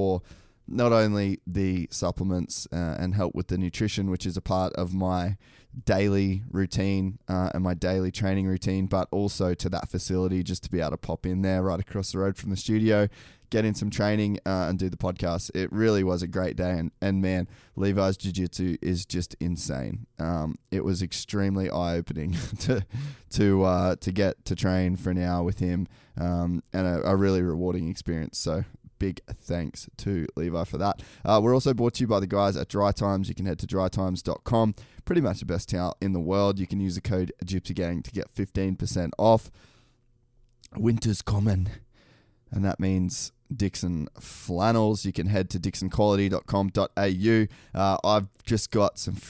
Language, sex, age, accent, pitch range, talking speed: English, male, 20-39, Australian, 90-105 Hz, 185 wpm